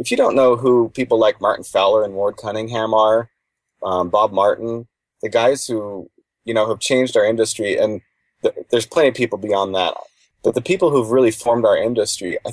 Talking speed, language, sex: 205 wpm, English, male